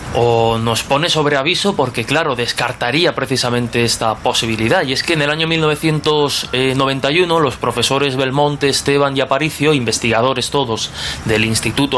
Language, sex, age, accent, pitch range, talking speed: Spanish, male, 20-39, Spanish, 125-170 Hz, 140 wpm